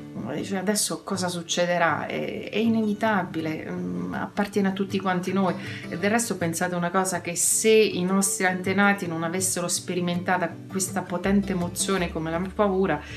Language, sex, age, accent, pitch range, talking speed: Italian, female, 30-49, native, 170-200 Hz, 135 wpm